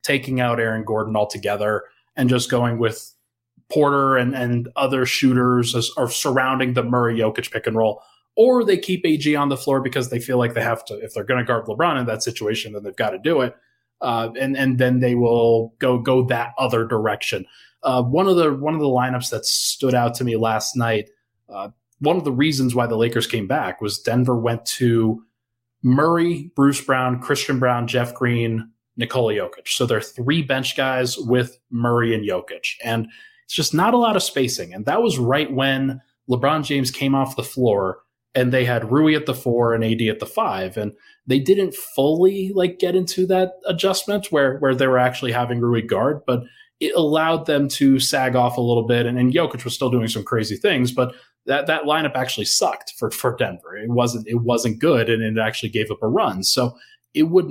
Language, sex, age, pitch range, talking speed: English, male, 20-39, 115-140 Hz, 210 wpm